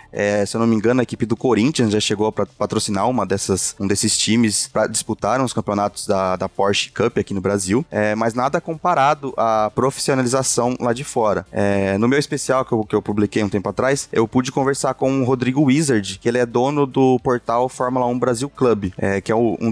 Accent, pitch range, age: Brazilian, 105-130 Hz, 20-39